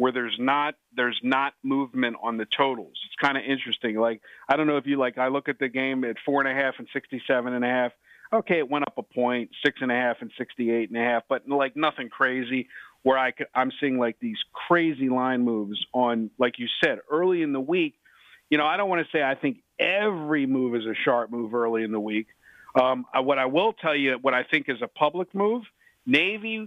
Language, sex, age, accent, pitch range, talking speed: English, male, 50-69, American, 120-150 Hz, 245 wpm